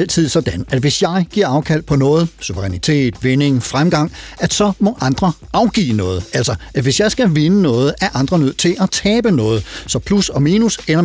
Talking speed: 200 wpm